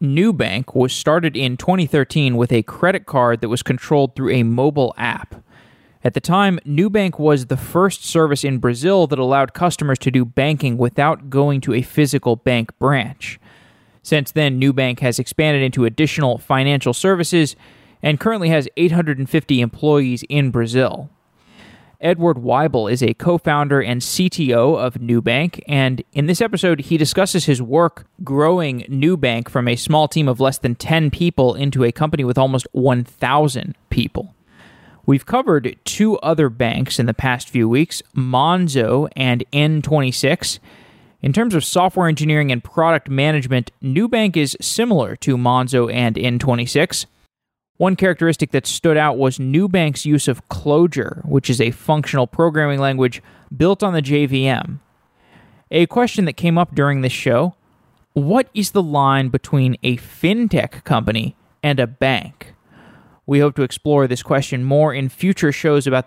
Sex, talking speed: male, 155 wpm